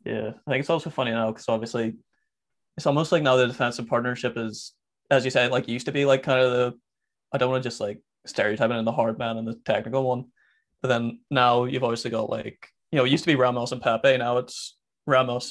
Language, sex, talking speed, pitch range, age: English, male, 245 wpm, 115-130 Hz, 20-39